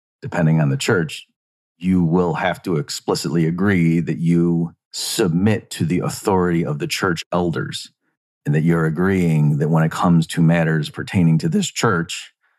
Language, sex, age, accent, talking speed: English, male, 40-59, American, 160 wpm